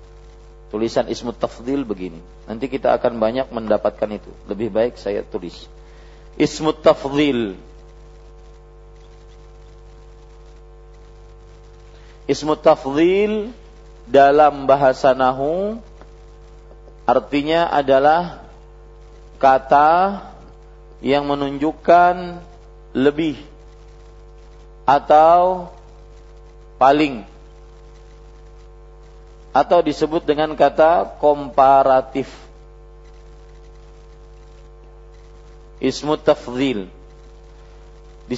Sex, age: male, 40-59